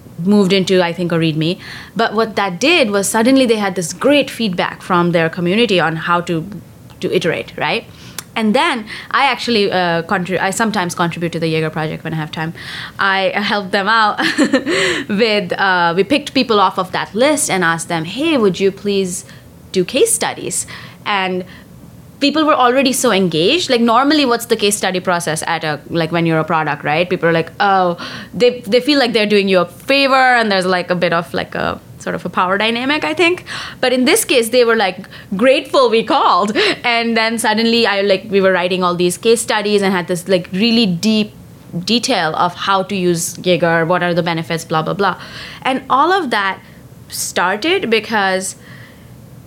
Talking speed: 195 wpm